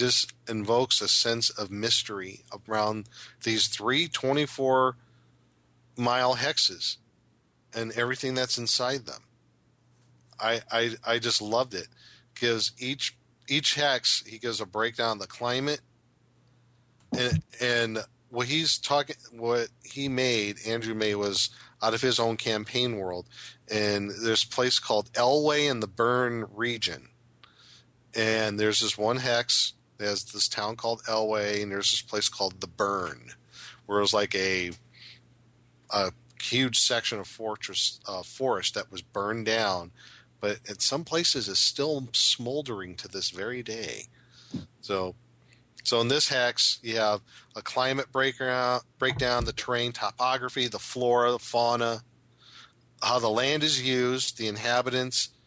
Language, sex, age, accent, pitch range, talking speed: English, male, 40-59, American, 110-125 Hz, 140 wpm